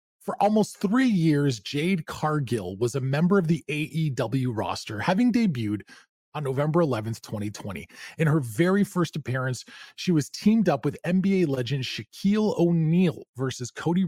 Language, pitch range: English, 120-170 Hz